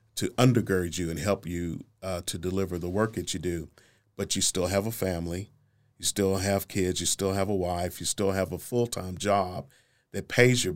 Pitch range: 90-105 Hz